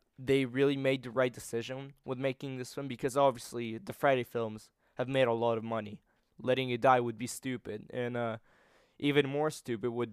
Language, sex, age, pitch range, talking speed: English, male, 20-39, 120-140 Hz, 195 wpm